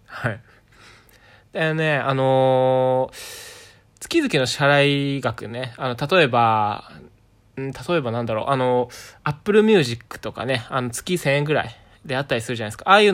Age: 20-39